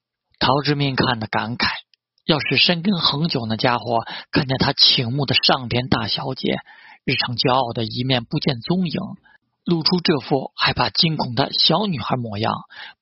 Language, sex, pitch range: Chinese, male, 130-195 Hz